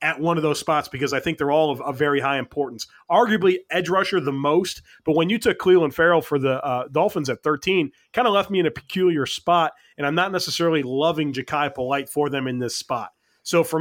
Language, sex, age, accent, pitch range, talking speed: English, male, 30-49, American, 150-185 Hz, 235 wpm